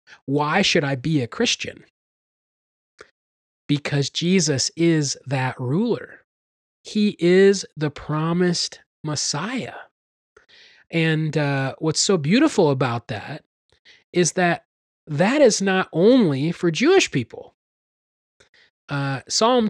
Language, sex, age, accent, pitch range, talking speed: English, male, 30-49, American, 140-185 Hz, 105 wpm